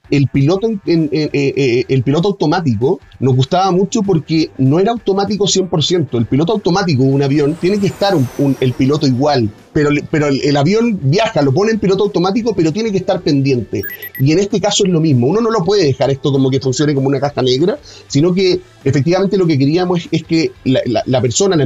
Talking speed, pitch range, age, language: 205 wpm, 135-185 Hz, 30-49, Spanish